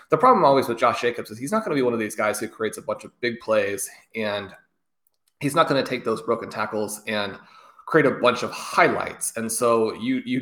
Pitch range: 105-125 Hz